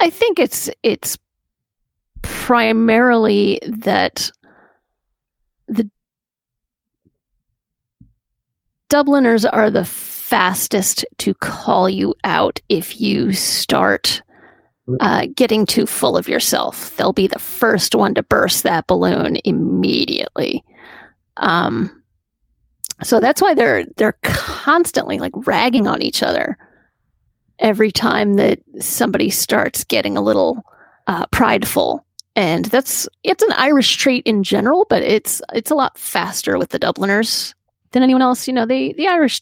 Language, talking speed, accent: English, 120 wpm, American